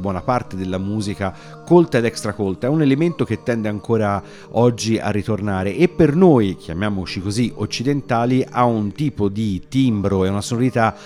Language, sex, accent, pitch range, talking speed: Italian, male, native, 95-130 Hz, 170 wpm